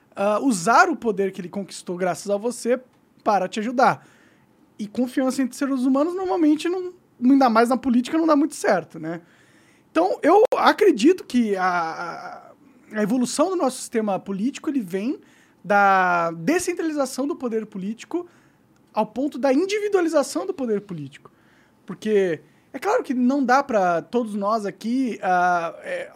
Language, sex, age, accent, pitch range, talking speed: Portuguese, male, 20-39, Brazilian, 205-285 Hz, 145 wpm